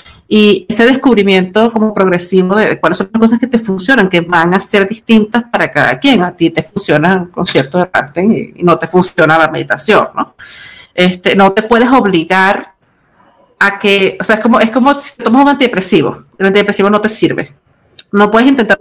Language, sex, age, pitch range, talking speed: Spanish, female, 50-69, 175-225 Hz, 190 wpm